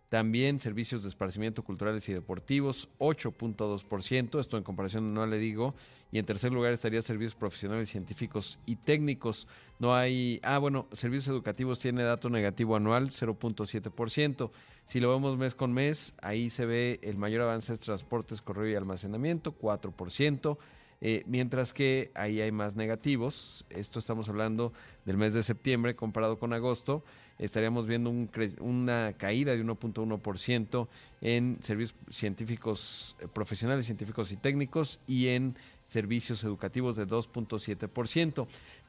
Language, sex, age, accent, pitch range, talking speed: Spanish, male, 40-59, Mexican, 110-130 Hz, 140 wpm